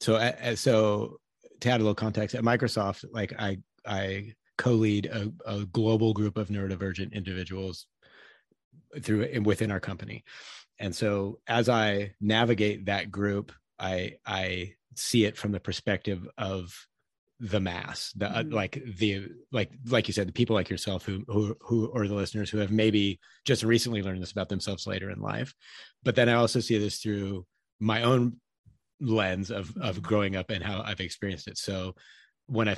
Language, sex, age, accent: English, male, 30-49, American